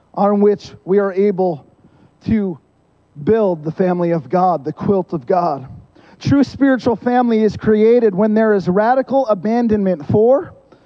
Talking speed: 145 wpm